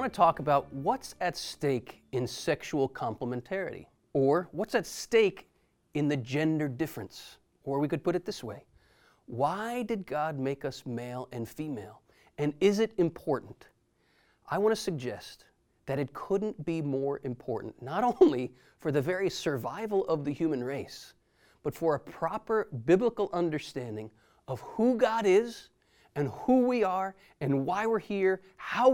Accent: American